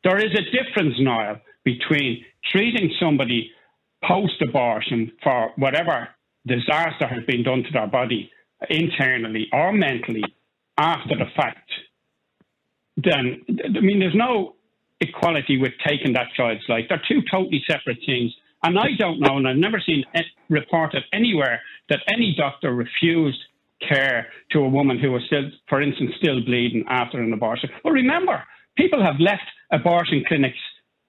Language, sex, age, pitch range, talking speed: English, male, 60-79, 125-175 Hz, 145 wpm